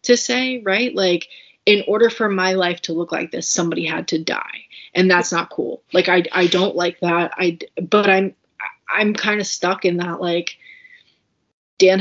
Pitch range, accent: 175-210 Hz, American